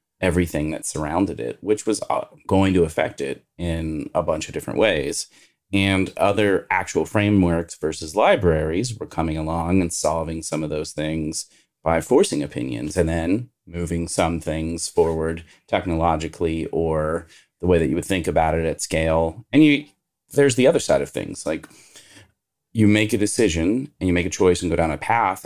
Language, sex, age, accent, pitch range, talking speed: English, male, 30-49, American, 80-95 Hz, 175 wpm